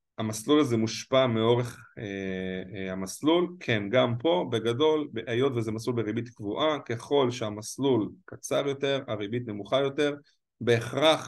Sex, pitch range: male, 110-145 Hz